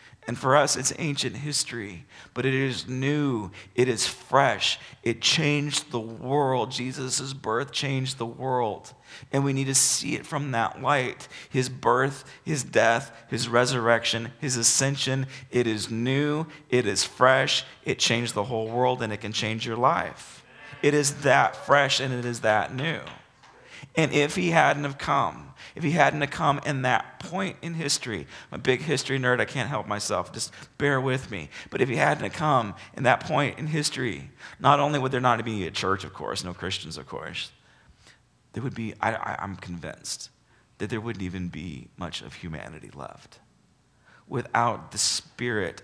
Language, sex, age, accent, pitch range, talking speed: English, male, 40-59, American, 100-135 Hz, 175 wpm